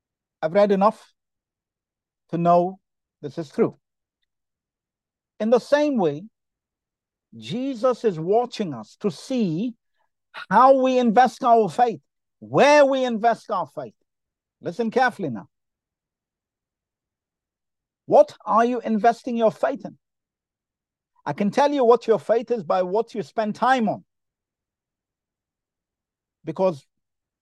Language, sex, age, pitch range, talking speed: English, male, 50-69, 170-235 Hz, 115 wpm